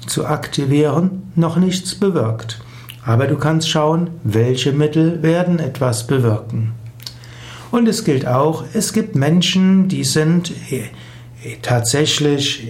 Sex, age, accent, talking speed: male, 60-79, German, 115 wpm